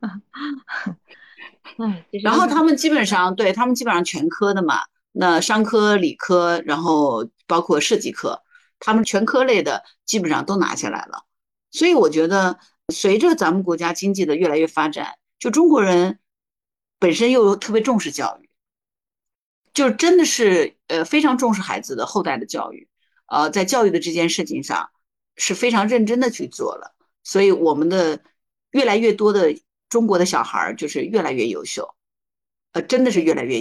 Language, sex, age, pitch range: Chinese, female, 50-69, 175-250 Hz